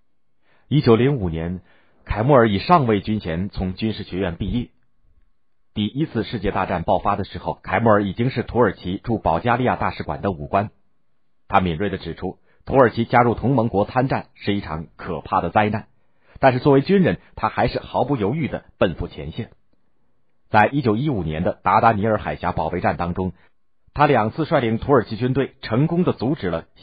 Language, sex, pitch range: Chinese, male, 90-115 Hz